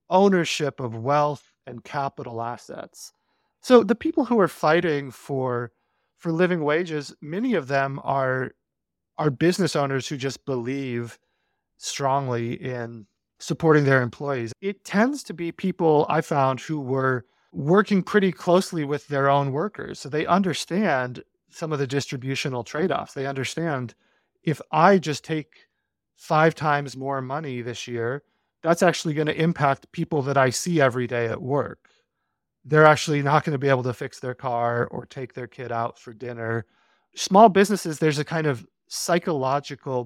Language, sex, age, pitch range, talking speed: English, male, 30-49, 125-160 Hz, 155 wpm